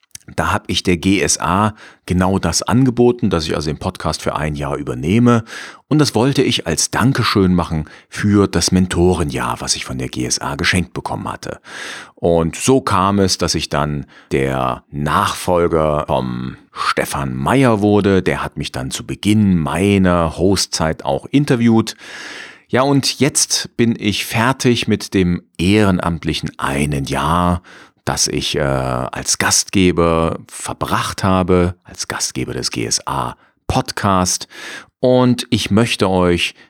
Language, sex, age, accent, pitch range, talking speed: German, male, 40-59, German, 80-110 Hz, 135 wpm